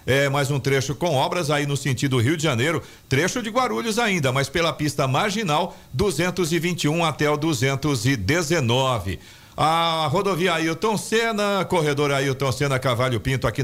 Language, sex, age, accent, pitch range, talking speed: Portuguese, male, 50-69, Brazilian, 135-170 Hz, 155 wpm